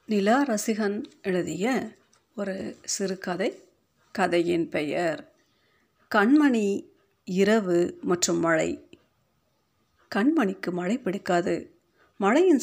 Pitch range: 180-260 Hz